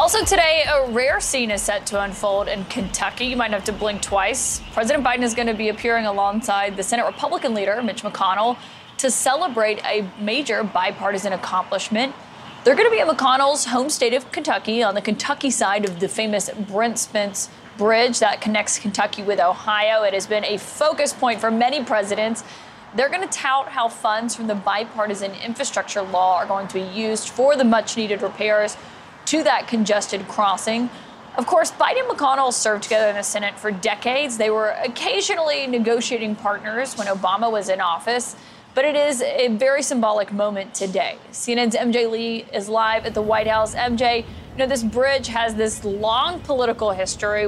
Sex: female